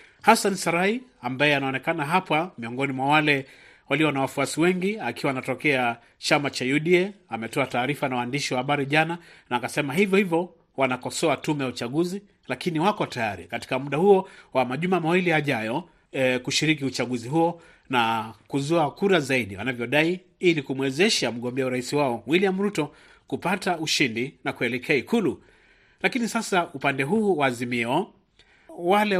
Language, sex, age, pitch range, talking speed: Swahili, male, 40-59, 130-170 Hz, 140 wpm